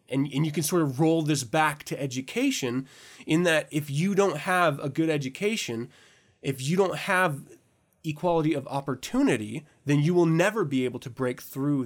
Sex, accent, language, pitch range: male, American, English, 125-170 Hz